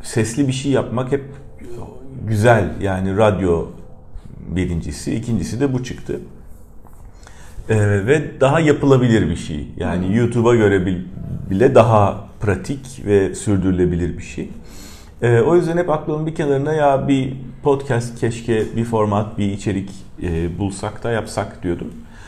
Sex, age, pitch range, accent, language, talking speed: male, 40-59, 90-135 Hz, native, Turkish, 130 wpm